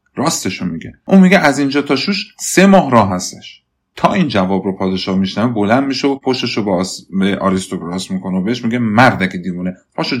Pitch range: 95-145 Hz